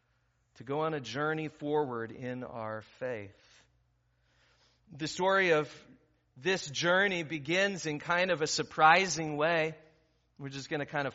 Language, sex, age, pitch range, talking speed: English, male, 40-59, 150-235 Hz, 145 wpm